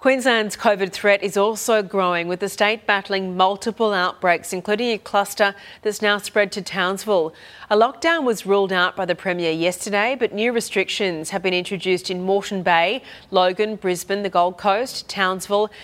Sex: female